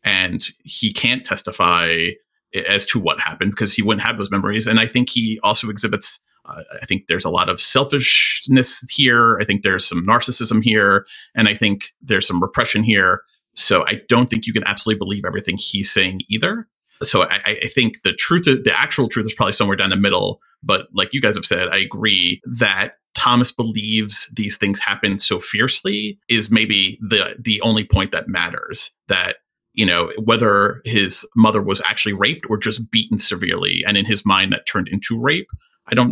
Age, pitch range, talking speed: 30-49, 100-125 Hz, 195 wpm